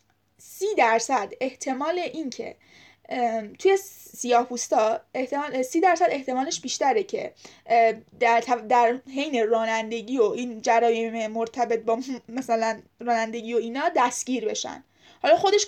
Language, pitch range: Persian, 240-350 Hz